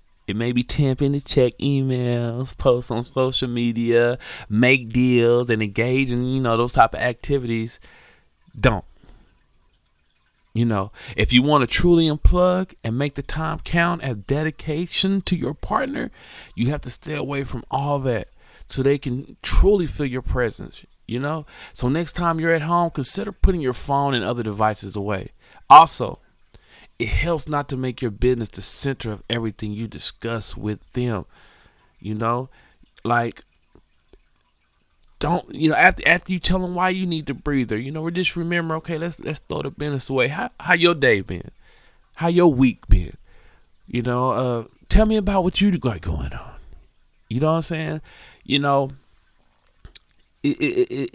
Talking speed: 170 wpm